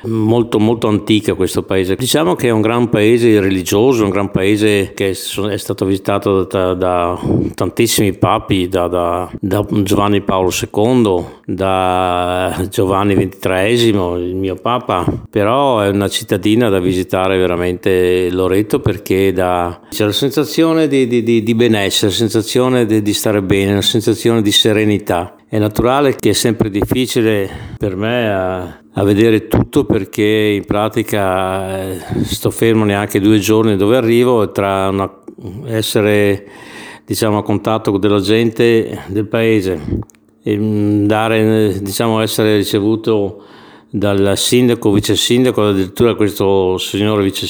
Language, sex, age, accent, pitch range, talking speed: Italian, male, 50-69, native, 95-110 Hz, 135 wpm